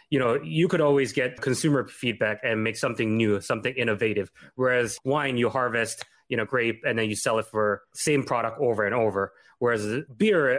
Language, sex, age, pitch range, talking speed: English, male, 20-39, 110-140 Hz, 195 wpm